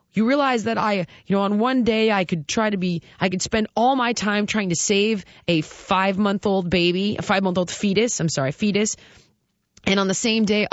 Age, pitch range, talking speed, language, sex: 20-39, 195-260 Hz, 205 wpm, English, female